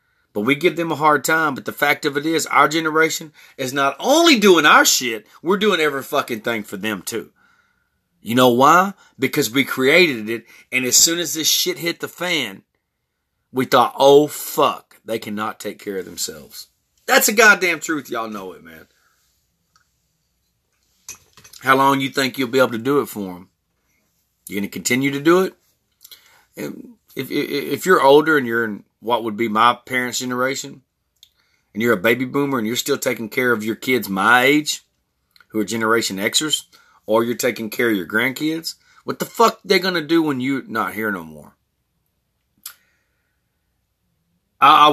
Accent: American